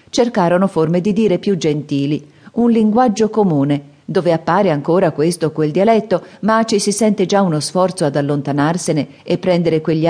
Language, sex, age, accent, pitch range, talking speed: Italian, female, 40-59, native, 150-195 Hz, 165 wpm